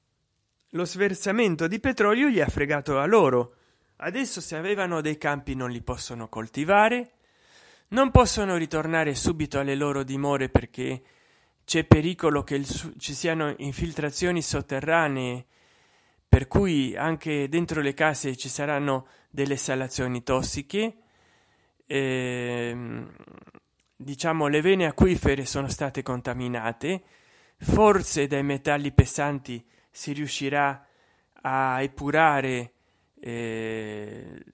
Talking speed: 110 wpm